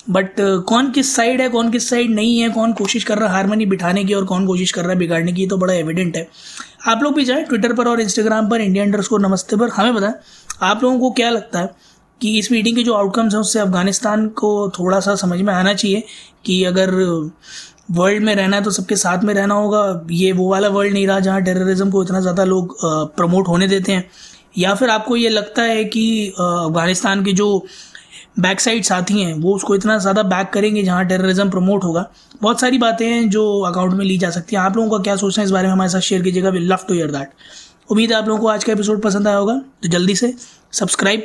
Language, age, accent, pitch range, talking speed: Hindi, 20-39, native, 185-220 Hz, 240 wpm